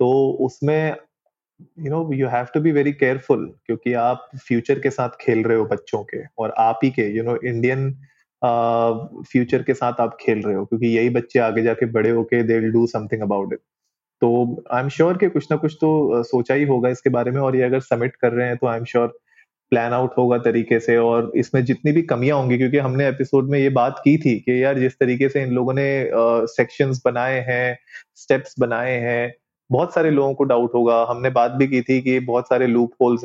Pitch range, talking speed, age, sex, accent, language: 115-130 Hz, 220 wpm, 30-49, male, native, Hindi